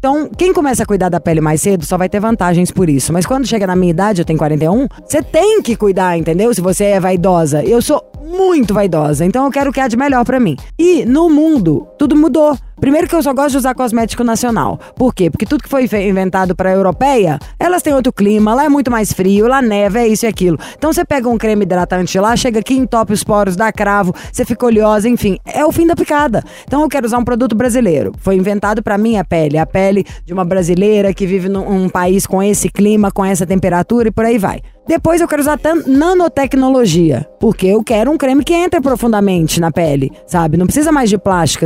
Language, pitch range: Portuguese, 190-270 Hz